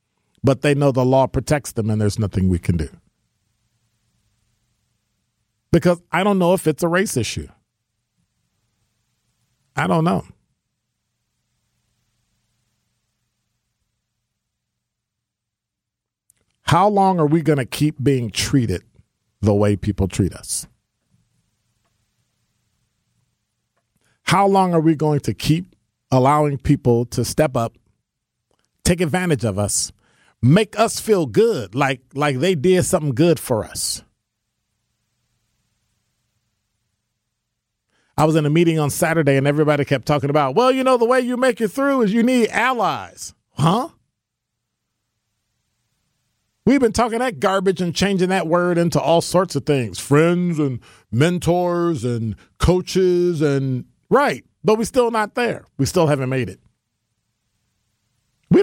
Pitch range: 110-165 Hz